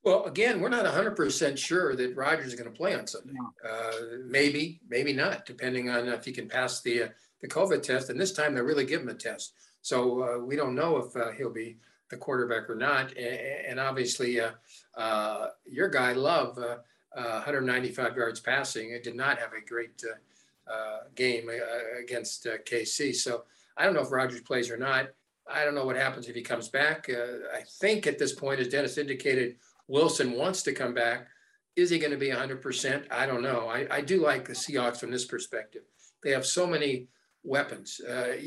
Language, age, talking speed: English, 50-69, 205 wpm